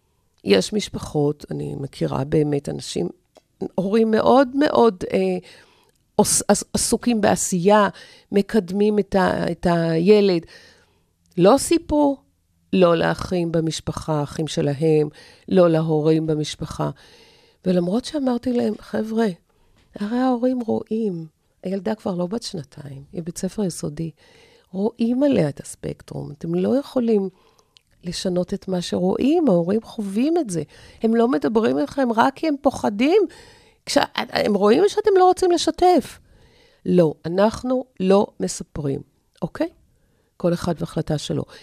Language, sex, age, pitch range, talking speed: Hebrew, female, 50-69, 160-235 Hz, 120 wpm